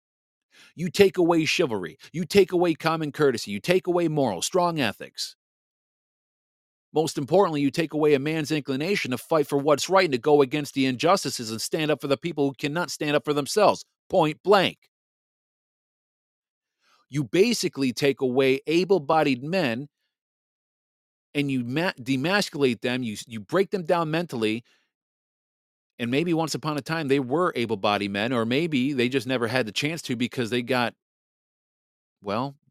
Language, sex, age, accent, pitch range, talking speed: English, male, 40-59, American, 120-155 Hz, 160 wpm